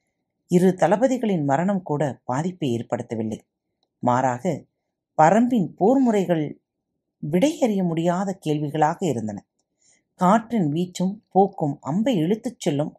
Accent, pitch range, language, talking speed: native, 145-225 Hz, Tamil, 90 wpm